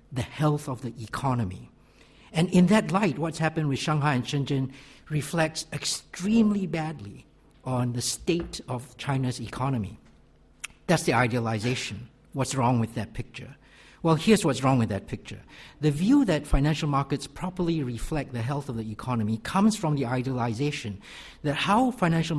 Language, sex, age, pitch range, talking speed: English, male, 60-79, 120-160 Hz, 155 wpm